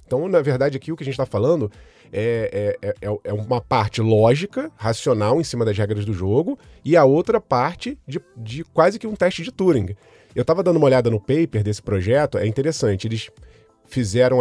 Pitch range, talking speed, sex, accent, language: 110-155 Hz, 195 wpm, male, Brazilian, Portuguese